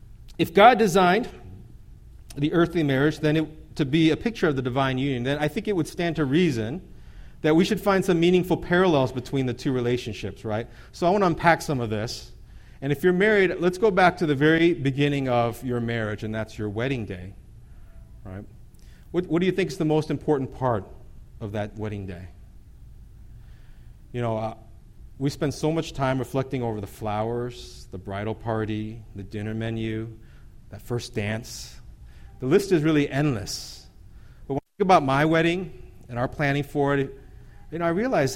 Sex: male